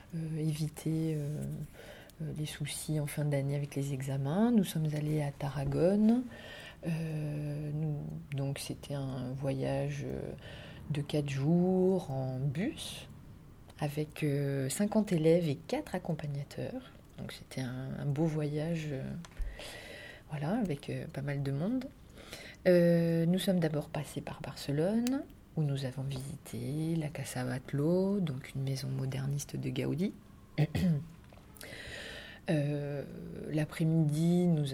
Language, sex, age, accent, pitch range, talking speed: French, female, 30-49, French, 135-165 Hz, 115 wpm